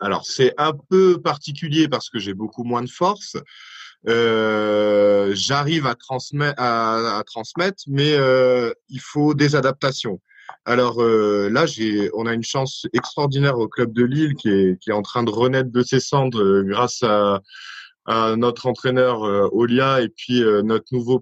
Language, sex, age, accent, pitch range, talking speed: French, male, 20-39, French, 105-140 Hz, 170 wpm